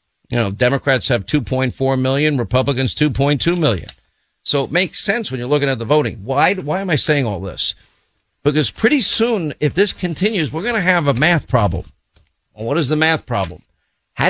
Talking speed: 195 wpm